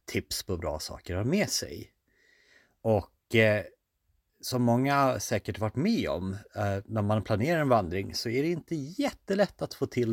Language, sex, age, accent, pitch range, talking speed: Swedish, male, 40-59, native, 95-130 Hz, 180 wpm